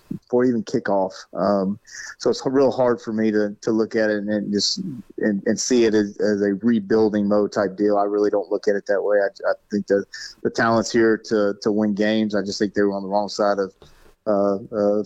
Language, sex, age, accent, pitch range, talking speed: English, male, 30-49, American, 100-115 Hz, 235 wpm